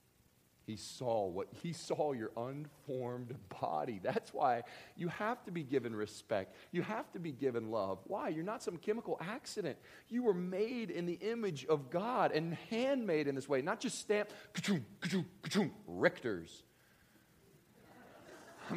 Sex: male